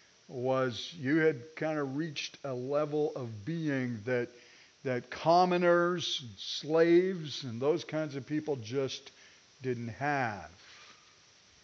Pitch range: 140-195 Hz